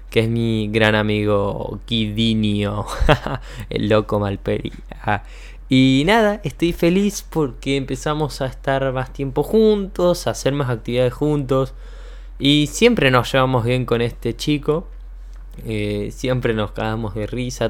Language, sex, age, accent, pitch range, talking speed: Spanish, male, 20-39, Argentinian, 115-150 Hz, 130 wpm